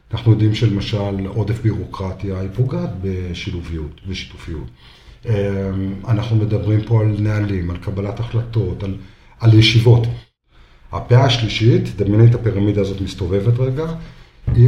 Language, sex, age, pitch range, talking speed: Hebrew, male, 50-69, 95-120 Hz, 110 wpm